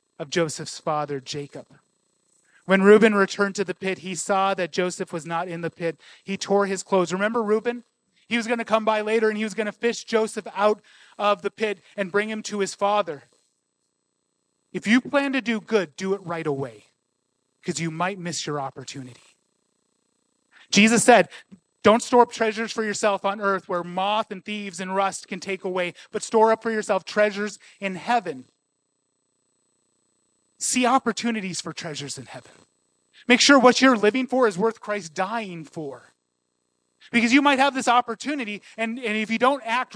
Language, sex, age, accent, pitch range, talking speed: English, male, 30-49, American, 155-215 Hz, 180 wpm